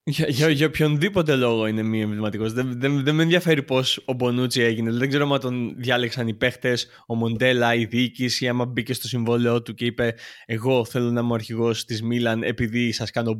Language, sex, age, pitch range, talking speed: Greek, male, 20-39, 115-135 Hz, 210 wpm